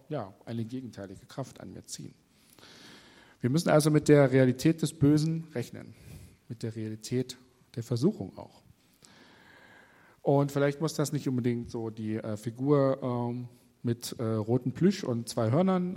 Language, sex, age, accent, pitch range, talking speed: German, male, 40-59, German, 120-145 Hz, 150 wpm